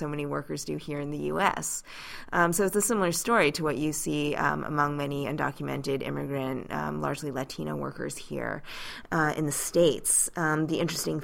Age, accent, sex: 20-39, American, female